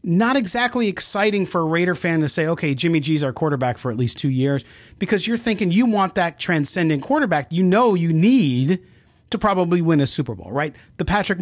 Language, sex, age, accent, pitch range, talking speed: English, male, 40-59, American, 140-195 Hz, 210 wpm